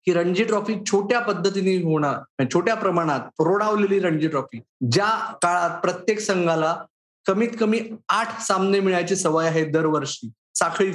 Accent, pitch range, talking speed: native, 165-210 Hz, 130 wpm